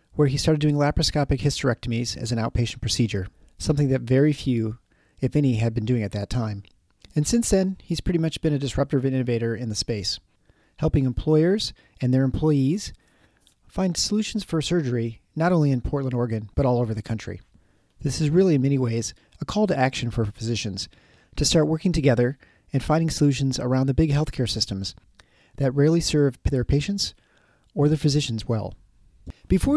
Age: 40-59